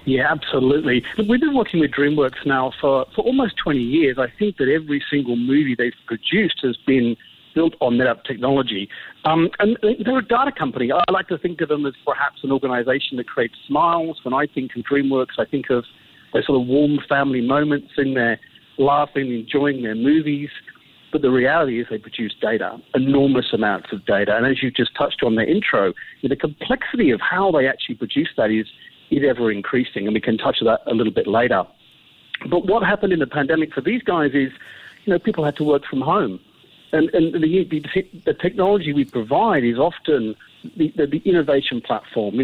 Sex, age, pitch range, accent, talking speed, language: male, 50-69, 125-170 Hz, British, 200 wpm, English